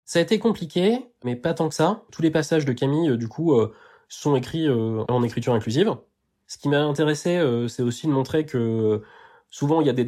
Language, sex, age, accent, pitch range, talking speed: French, male, 20-39, French, 120-150 Hz, 210 wpm